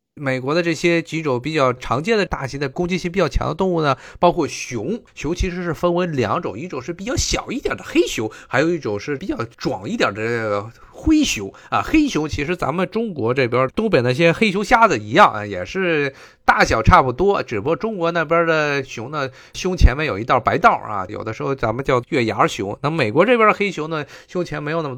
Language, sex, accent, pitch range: Chinese, male, native, 135-195 Hz